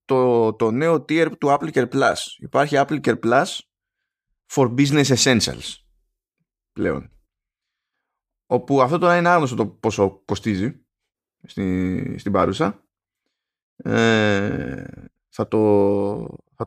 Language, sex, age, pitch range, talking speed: Greek, male, 20-39, 105-130 Hz, 110 wpm